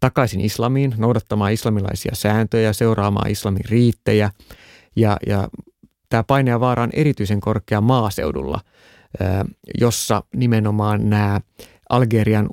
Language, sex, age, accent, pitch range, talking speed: Finnish, male, 30-49, native, 105-130 Hz, 100 wpm